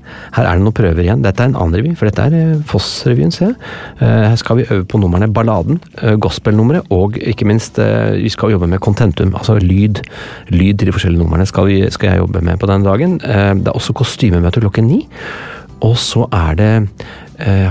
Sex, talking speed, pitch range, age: male, 225 wpm, 95-115 Hz, 40-59